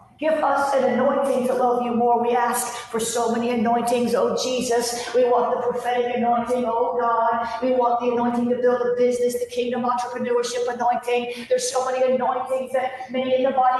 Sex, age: female, 50-69